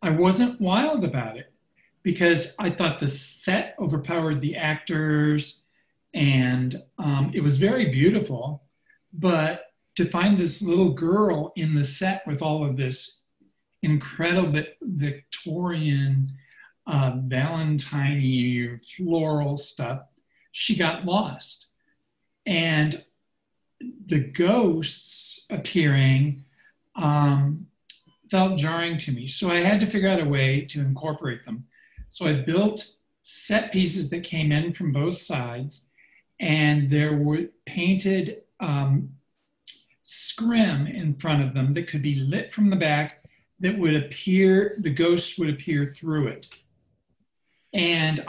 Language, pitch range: English, 145-185 Hz